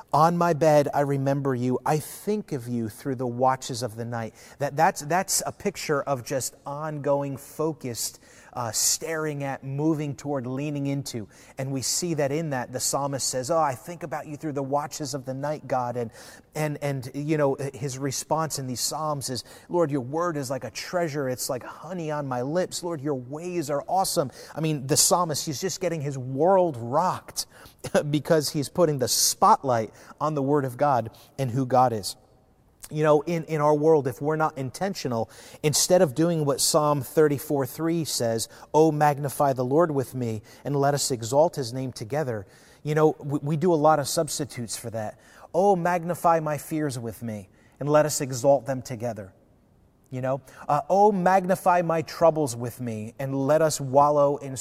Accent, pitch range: American, 130-155 Hz